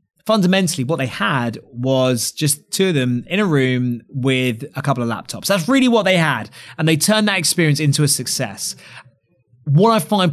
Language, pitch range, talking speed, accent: English, 125-160 Hz, 190 wpm, British